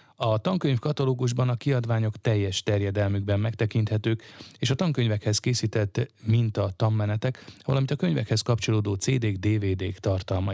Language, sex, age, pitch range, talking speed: Hungarian, male, 30-49, 100-120 Hz, 120 wpm